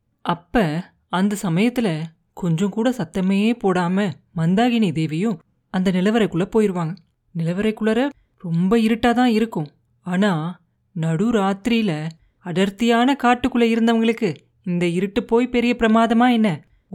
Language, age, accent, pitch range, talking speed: Tamil, 30-49, native, 175-230 Hz, 100 wpm